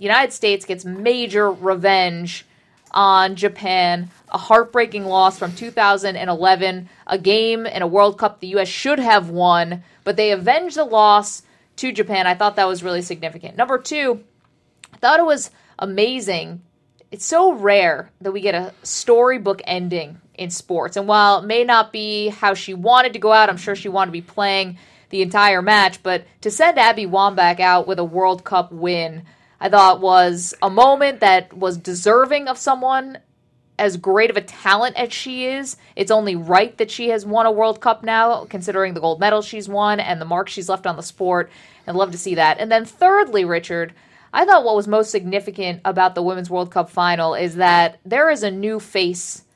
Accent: American